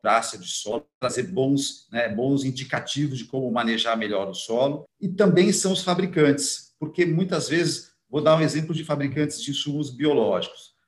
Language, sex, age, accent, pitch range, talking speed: Portuguese, male, 50-69, Brazilian, 135-175 Hz, 165 wpm